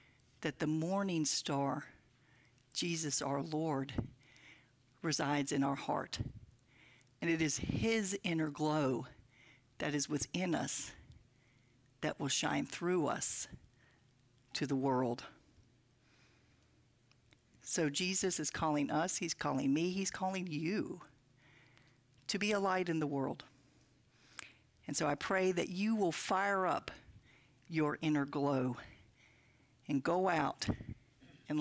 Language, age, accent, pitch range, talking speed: English, 50-69, American, 125-170 Hz, 120 wpm